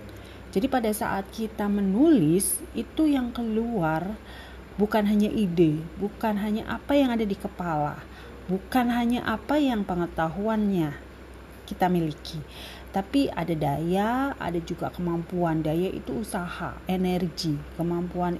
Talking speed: 115 wpm